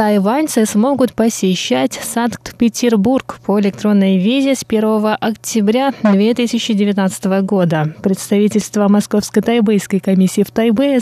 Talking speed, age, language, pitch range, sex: 100 wpm, 20-39, Russian, 200-240 Hz, female